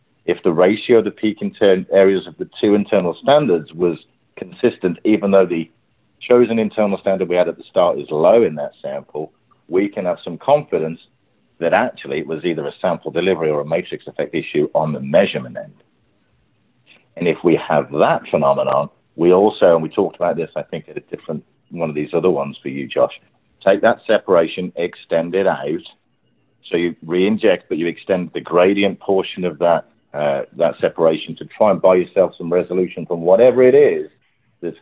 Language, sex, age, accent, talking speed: English, male, 40-59, British, 190 wpm